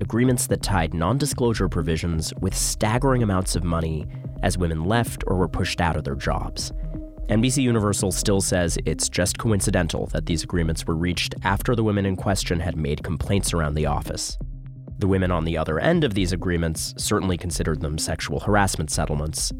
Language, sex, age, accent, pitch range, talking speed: English, male, 30-49, American, 80-105 Hz, 180 wpm